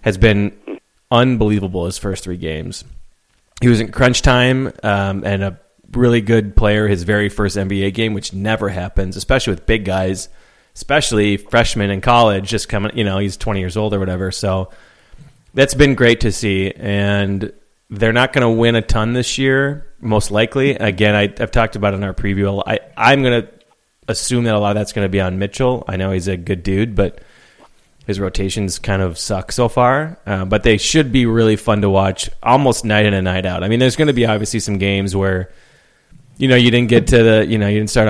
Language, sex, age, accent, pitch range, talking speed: English, male, 30-49, American, 95-115 Hz, 220 wpm